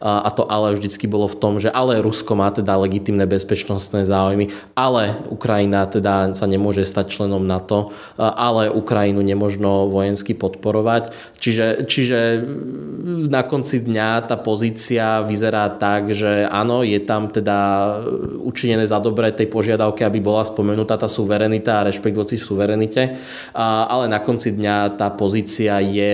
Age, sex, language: 20-39, male, Slovak